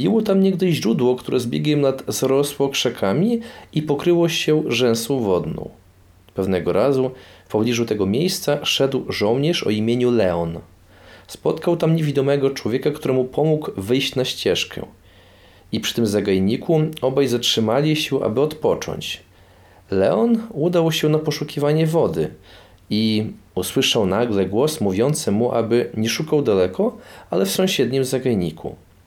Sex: male